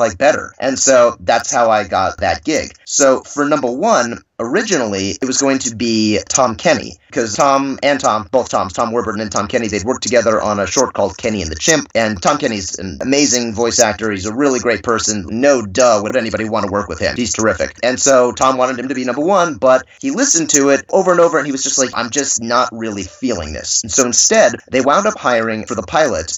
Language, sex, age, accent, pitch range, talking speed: English, male, 30-49, American, 115-150 Hz, 240 wpm